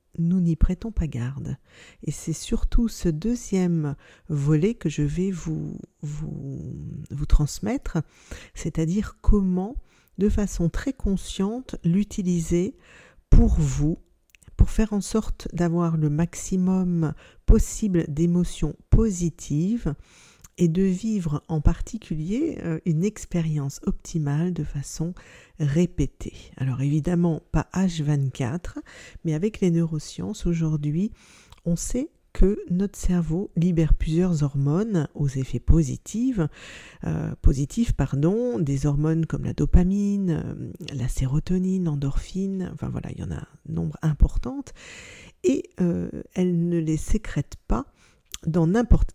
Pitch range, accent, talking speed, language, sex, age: 150-190 Hz, French, 115 wpm, French, female, 50-69